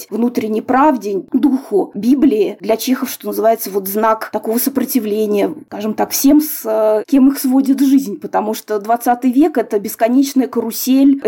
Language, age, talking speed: Russian, 20-39, 150 wpm